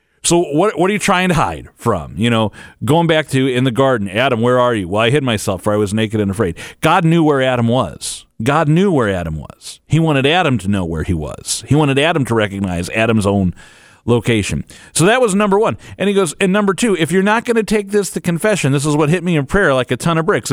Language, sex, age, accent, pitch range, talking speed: English, male, 40-59, American, 90-145 Hz, 260 wpm